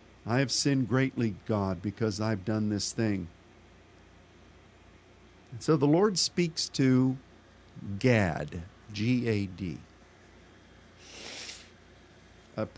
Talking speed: 90 wpm